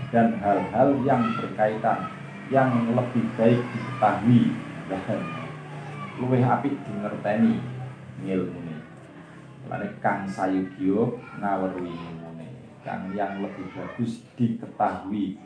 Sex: male